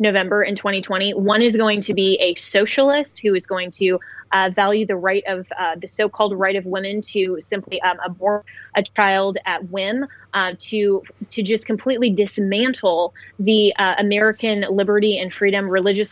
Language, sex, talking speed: English, female, 170 wpm